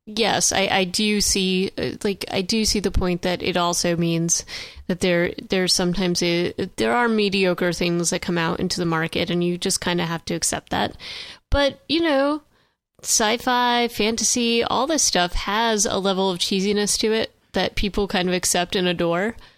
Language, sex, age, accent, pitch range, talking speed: English, female, 30-49, American, 175-220 Hz, 185 wpm